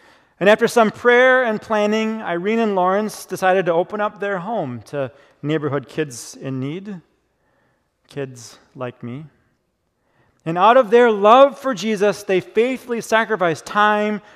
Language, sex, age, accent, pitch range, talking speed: English, male, 40-59, American, 145-220 Hz, 140 wpm